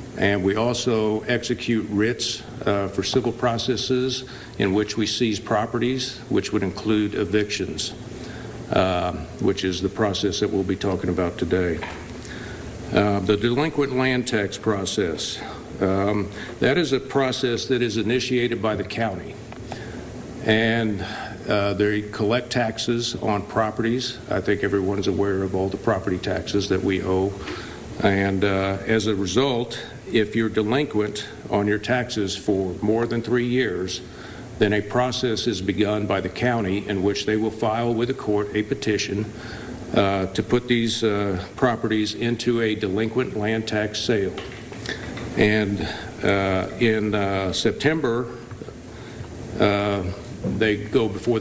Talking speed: 140 wpm